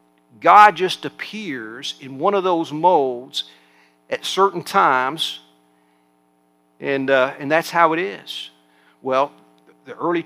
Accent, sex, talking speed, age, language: American, male, 125 wpm, 50-69, English